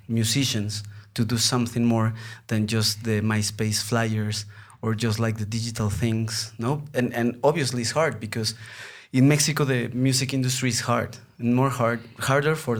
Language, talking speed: Spanish, 165 wpm